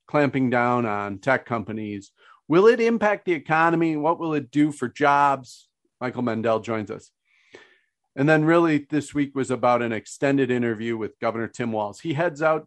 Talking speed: 175 wpm